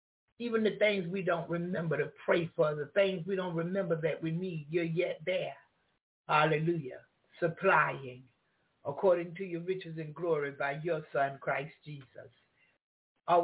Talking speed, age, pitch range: 150 wpm, 60-79, 140-175 Hz